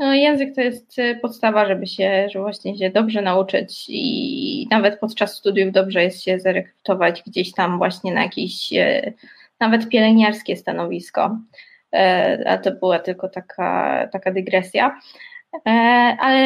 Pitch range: 200-260 Hz